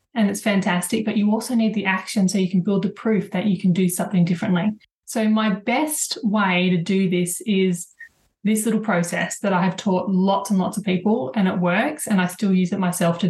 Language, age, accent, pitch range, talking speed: English, 20-39, Australian, 190-225 Hz, 230 wpm